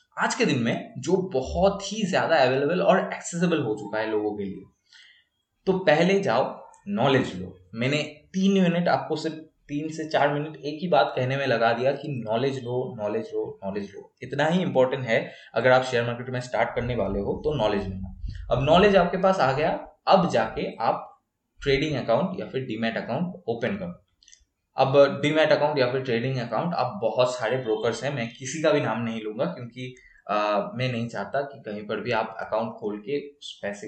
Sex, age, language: male, 20-39, English